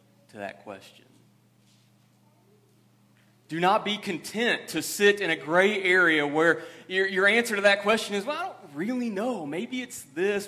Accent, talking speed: American, 160 wpm